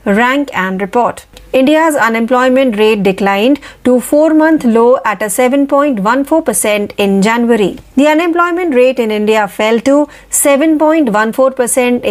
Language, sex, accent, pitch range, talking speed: Marathi, female, native, 220-275 Hz, 110 wpm